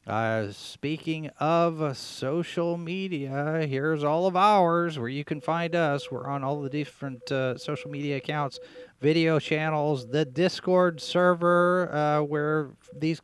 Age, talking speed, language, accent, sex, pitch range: 40-59, 145 wpm, English, American, male, 140-175 Hz